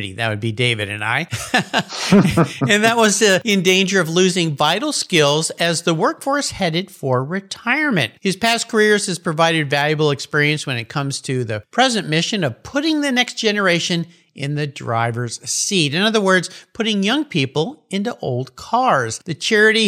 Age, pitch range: 50-69, 140-195 Hz